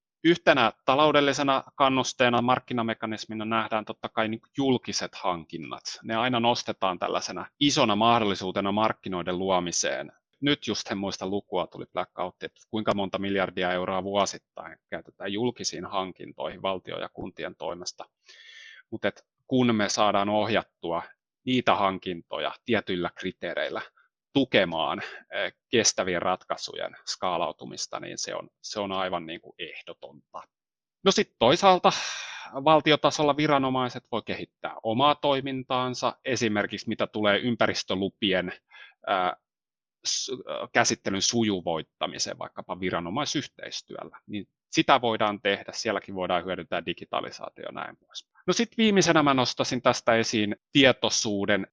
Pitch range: 100-130 Hz